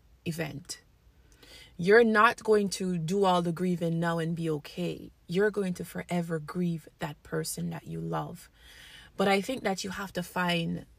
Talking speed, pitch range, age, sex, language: 170 wpm, 165-185 Hz, 20-39, female, English